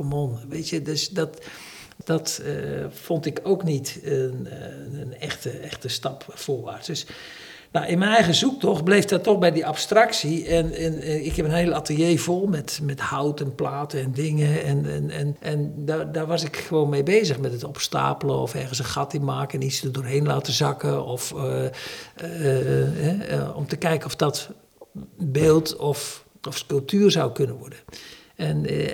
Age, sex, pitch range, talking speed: 60-79, male, 140-170 Hz, 185 wpm